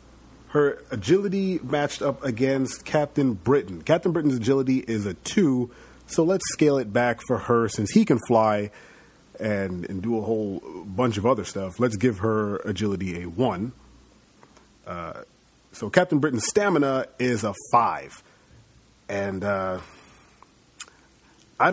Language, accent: English, American